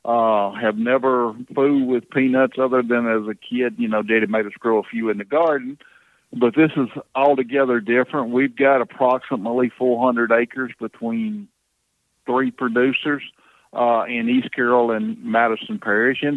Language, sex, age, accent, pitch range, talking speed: English, male, 50-69, American, 110-130 Hz, 160 wpm